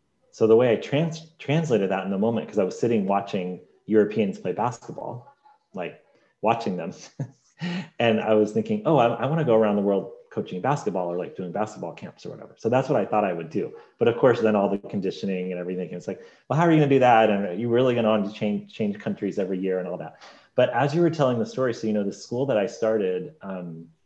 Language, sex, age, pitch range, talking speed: English, male, 30-49, 95-135 Hz, 250 wpm